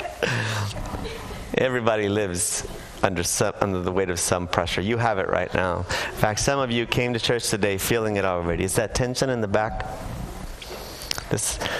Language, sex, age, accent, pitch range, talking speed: English, male, 30-49, American, 120-195 Hz, 175 wpm